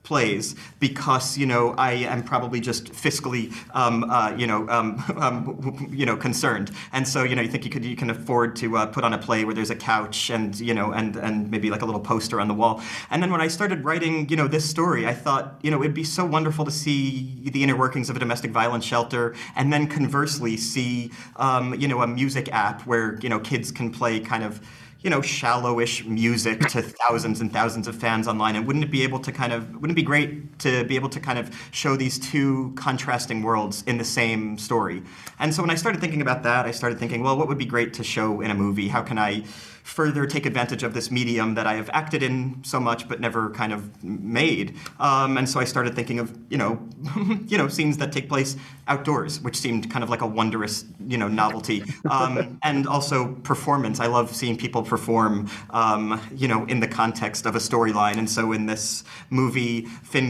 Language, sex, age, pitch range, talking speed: English, male, 40-59, 115-135 Hz, 225 wpm